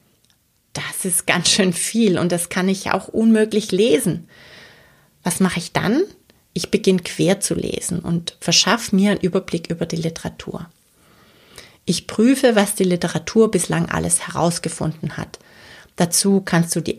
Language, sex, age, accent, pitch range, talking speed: German, female, 30-49, German, 170-210 Hz, 150 wpm